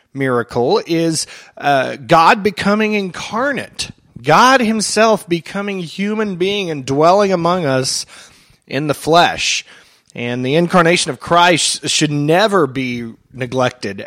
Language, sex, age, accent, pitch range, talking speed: English, male, 30-49, American, 125-165 Hz, 115 wpm